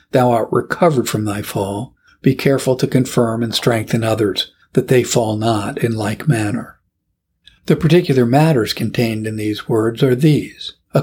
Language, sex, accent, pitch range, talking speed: English, male, American, 110-140 Hz, 165 wpm